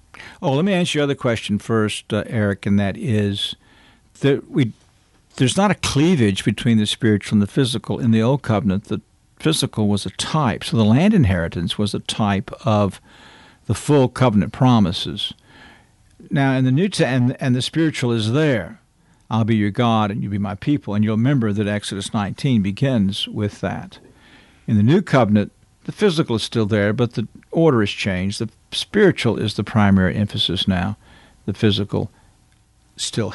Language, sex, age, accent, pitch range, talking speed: English, male, 60-79, American, 100-130 Hz, 175 wpm